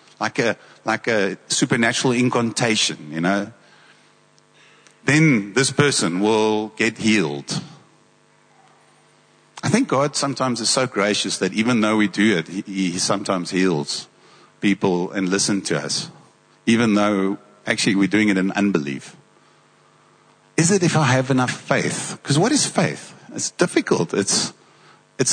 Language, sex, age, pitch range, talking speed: English, male, 50-69, 95-130 Hz, 140 wpm